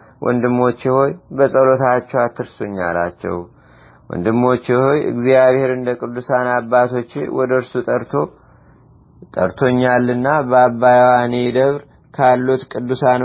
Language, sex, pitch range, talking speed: Amharic, male, 120-130 Hz, 80 wpm